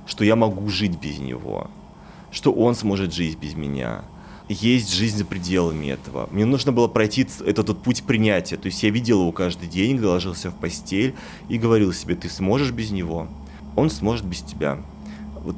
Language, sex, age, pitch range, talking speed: Russian, male, 30-49, 90-120 Hz, 185 wpm